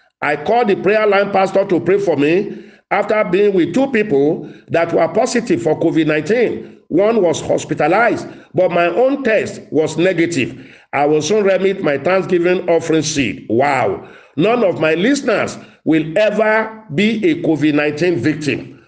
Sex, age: male, 50-69